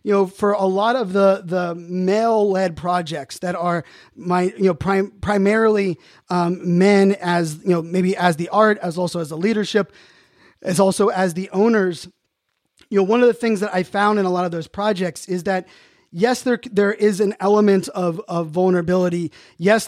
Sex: male